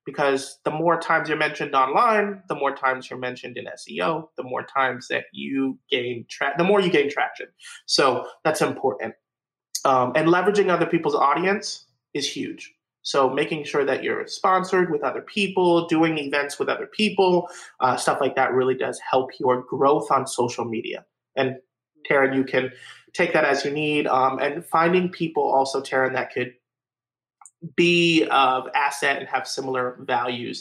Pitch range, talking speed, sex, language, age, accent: 130-180 Hz, 170 wpm, male, English, 30-49, American